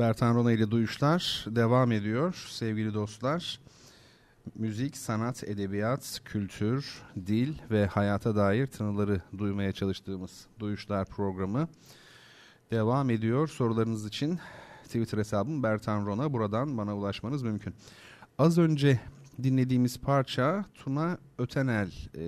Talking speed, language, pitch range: 105 wpm, Turkish, 105-140 Hz